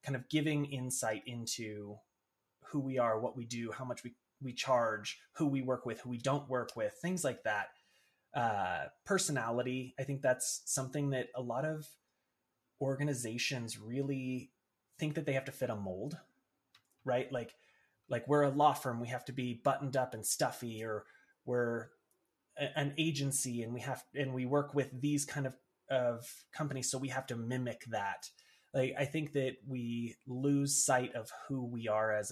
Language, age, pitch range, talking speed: English, 30-49, 120-145 Hz, 180 wpm